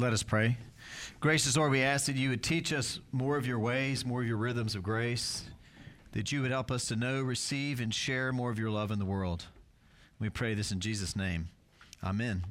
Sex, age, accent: male, 40-59, American